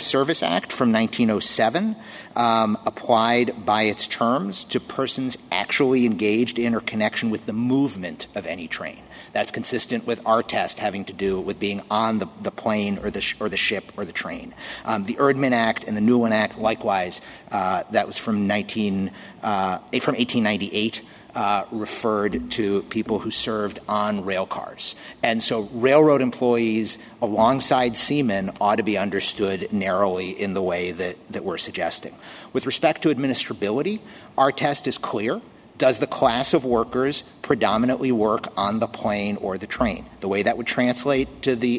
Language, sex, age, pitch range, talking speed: English, male, 50-69, 105-135 Hz, 170 wpm